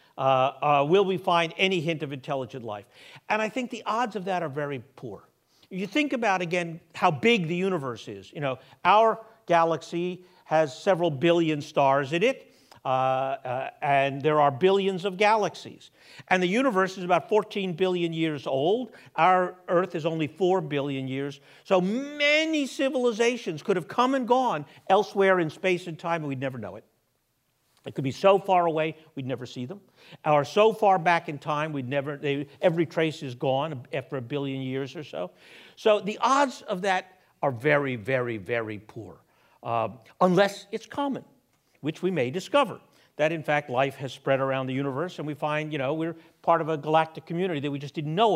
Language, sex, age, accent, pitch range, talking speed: English, male, 50-69, American, 140-190 Hz, 190 wpm